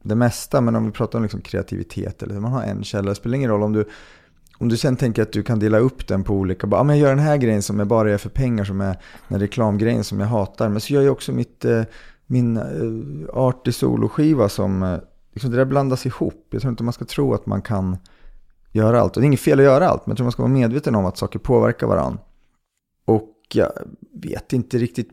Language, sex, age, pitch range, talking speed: English, male, 30-49, 100-125 Hz, 255 wpm